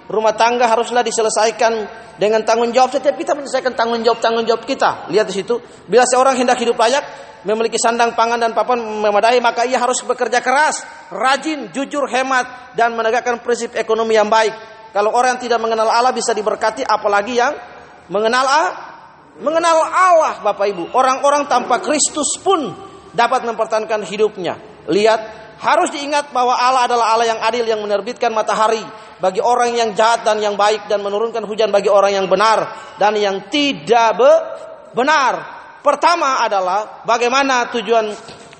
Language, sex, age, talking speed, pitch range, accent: Indonesian, male, 40-59, 150 wpm, 215-255 Hz, native